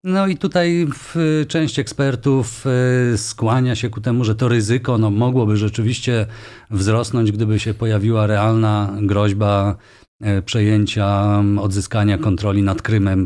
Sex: male